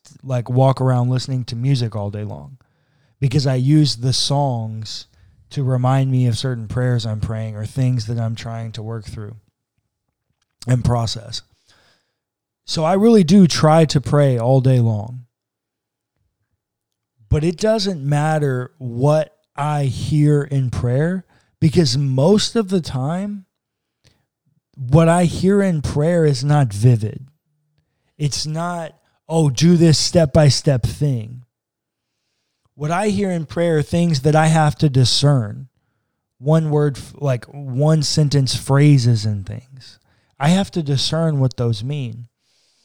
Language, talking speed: English, 135 wpm